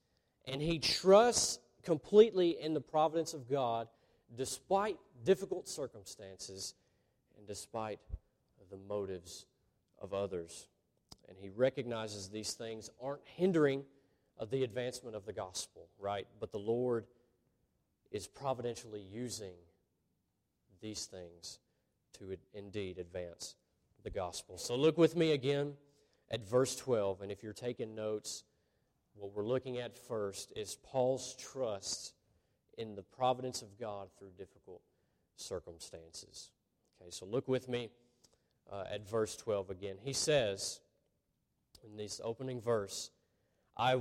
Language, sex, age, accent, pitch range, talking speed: English, male, 30-49, American, 105-145 Hz, 125 wpm